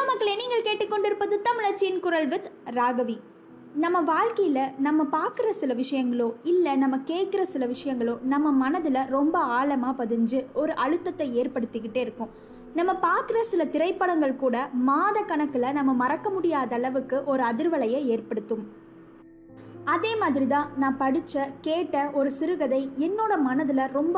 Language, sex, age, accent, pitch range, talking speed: Tamil, female, 20-39, native, 250-345 Hz, 60 wpm